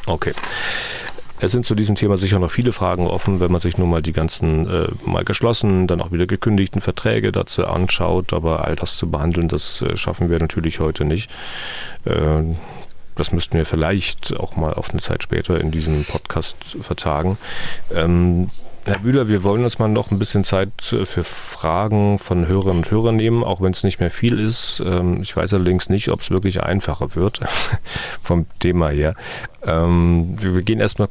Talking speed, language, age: 180 wpm, German, 40-59